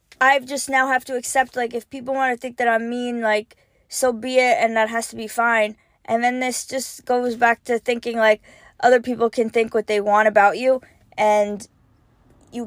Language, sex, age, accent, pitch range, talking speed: English, female, 20-39, American, 220-260 Hz, 215 wpm